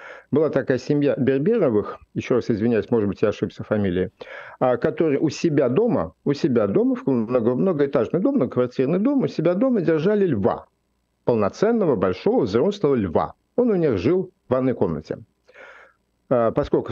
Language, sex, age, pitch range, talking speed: Russian, male, 50-69, 115-145 Hz, 140 wpm